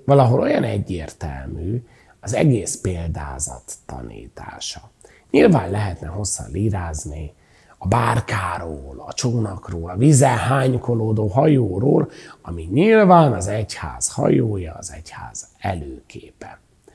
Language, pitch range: Hungarian, 80-125 Hz